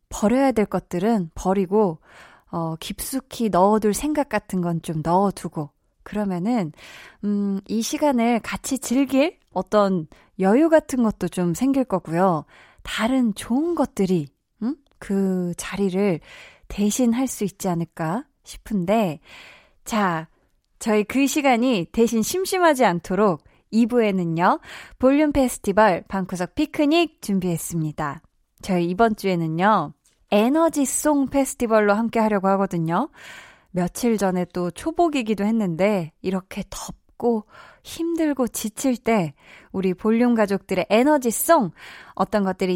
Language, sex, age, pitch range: Korean, female, 20-39, 185-255 Hz